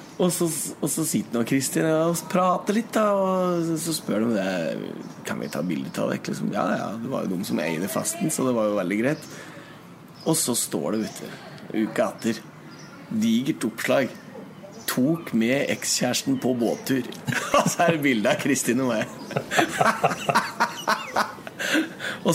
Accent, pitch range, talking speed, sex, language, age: Swedish, 120-175 Hz, 155 wpm, male, English, 30-49